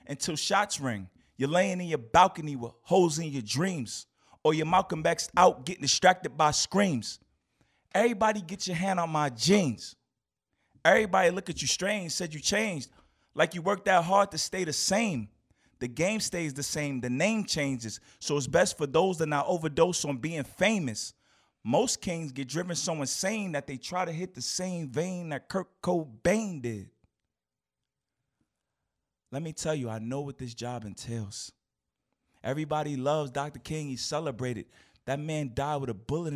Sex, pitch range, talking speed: male, 135-180 Hz, 175 wpm